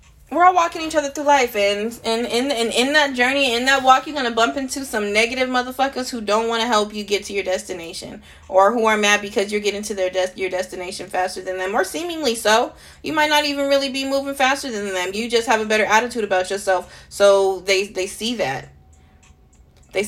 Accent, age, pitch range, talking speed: American, 20-39, 175-245 Hz, 230 wpm